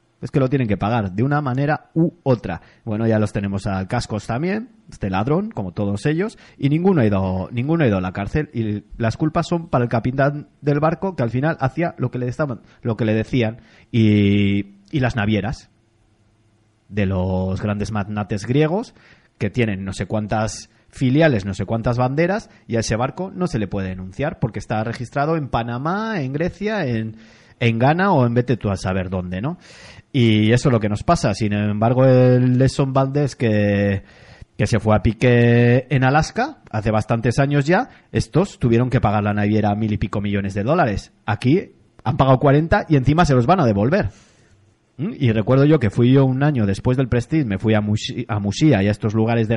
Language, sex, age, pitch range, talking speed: Spanish, male, 30-49, 105-140 Hz, 200 wpm